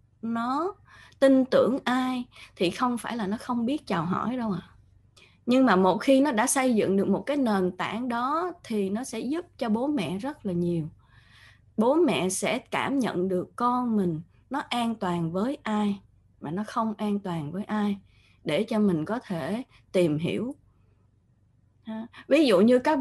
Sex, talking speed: female, 185 wpm